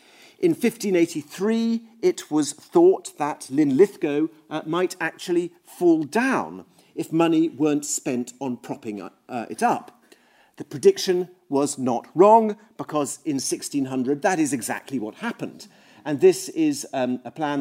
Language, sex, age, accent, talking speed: English, male, 40-59, British, 135 wpm